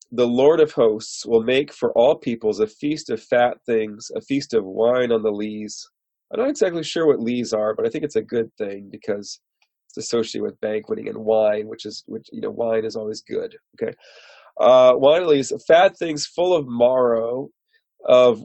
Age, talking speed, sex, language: 30-49, 200 wpm, male, English